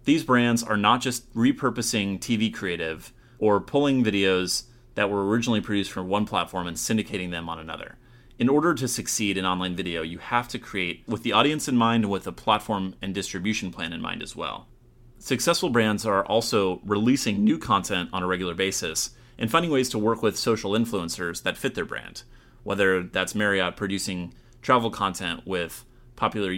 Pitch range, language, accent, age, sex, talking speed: 95-120 Hz, English, American, 30-49, male, 180 wpm